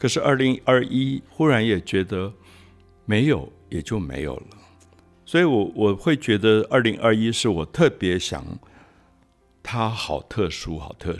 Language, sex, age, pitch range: Chinese, male, 60-79, 90-115 Hz